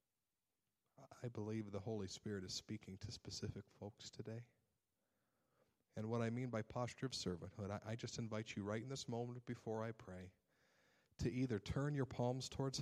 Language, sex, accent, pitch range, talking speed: English, male, American, 95-120 Hz, 175 wpm